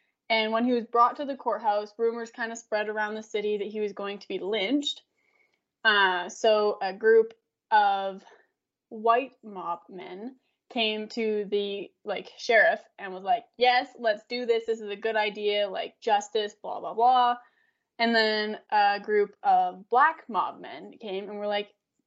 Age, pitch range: 20-39, 210-265 Hz